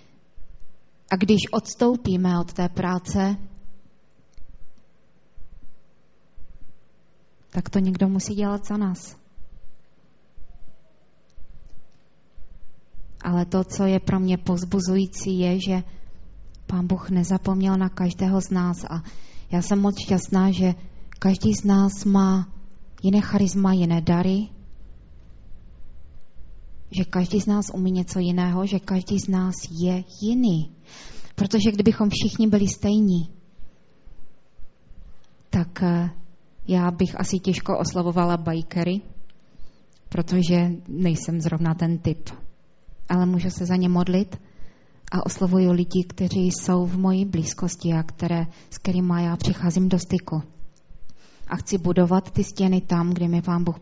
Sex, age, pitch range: female, 20-39, 175-190 Hz